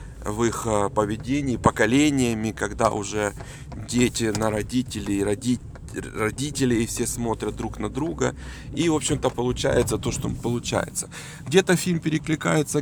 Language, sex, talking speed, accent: Ukrainian, male, 120 wpm, native